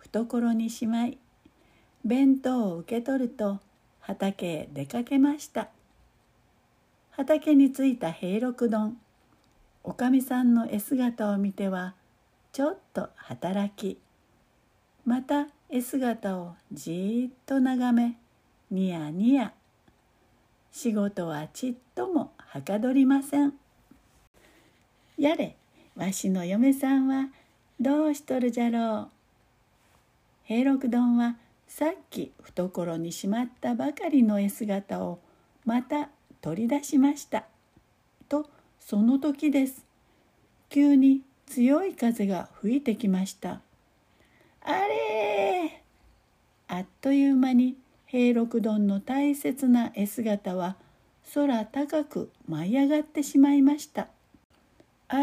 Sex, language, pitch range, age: female, Japanese, 205-275 Hz, 60-79